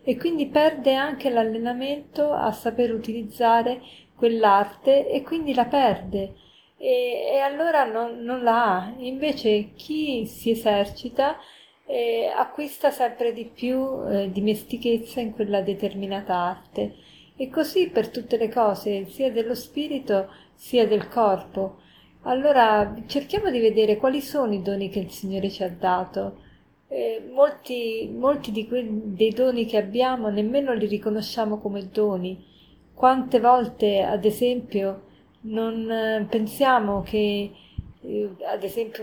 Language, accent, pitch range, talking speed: Italian, native, 205-255 Hz, 130 wpm